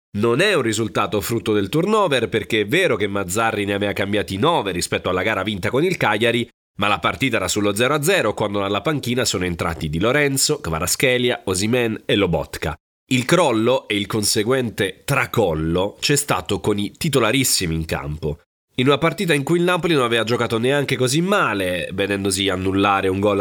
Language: Italian